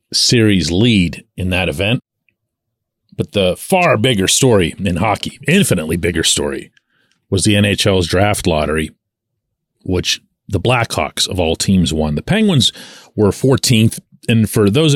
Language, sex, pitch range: English, male, 95-120 Hz